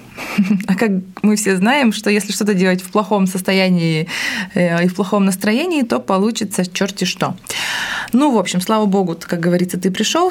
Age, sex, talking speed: 20-39, female, 170 wpm